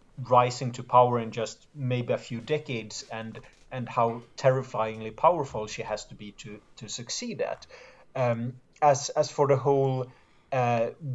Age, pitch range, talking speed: 30-49, 120-145 Hz, 155 wpm